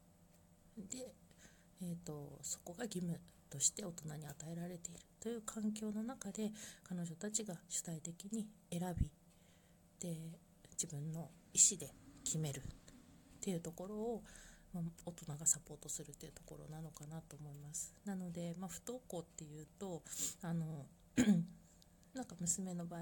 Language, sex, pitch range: Japanese, female, 160-195 Hz